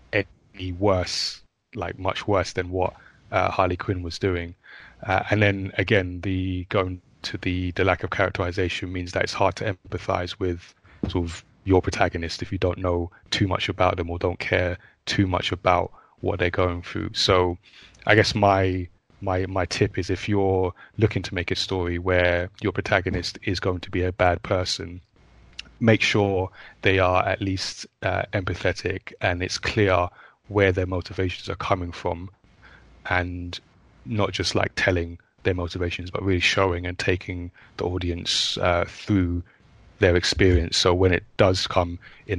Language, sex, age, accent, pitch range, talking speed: English, male, 20-39, British, 90-100 Hz, 170 wpm